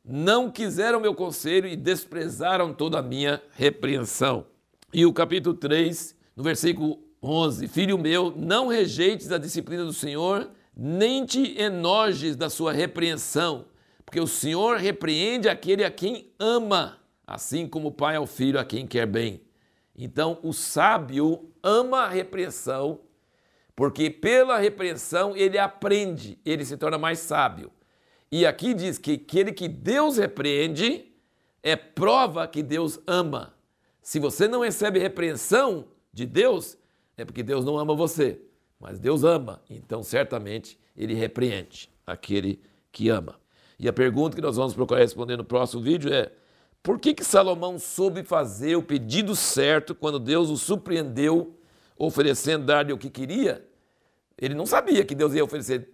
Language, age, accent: Portuguese, 60-79, Brazilian